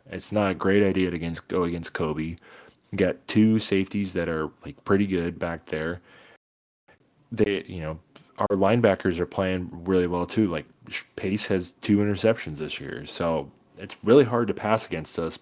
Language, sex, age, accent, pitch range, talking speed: English, male, 20-39, American, 85-100 Hz, 180 wpm